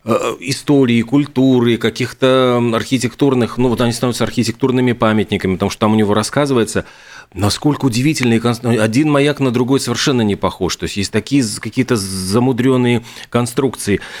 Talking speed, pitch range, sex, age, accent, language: 135 wpm, 100-125 Hz, male, 40-59, native, Russian